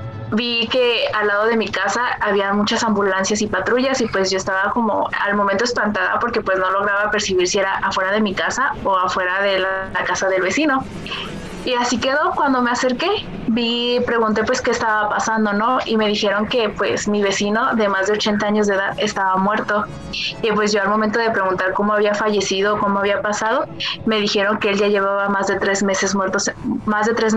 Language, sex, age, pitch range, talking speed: Spanish, female, 20-39, 195-225 Hz, 205 wpm